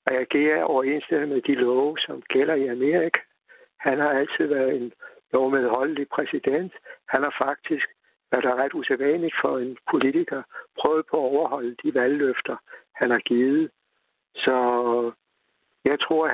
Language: Danish